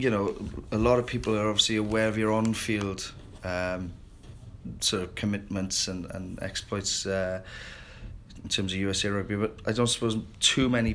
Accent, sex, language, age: British, male, English, 30-49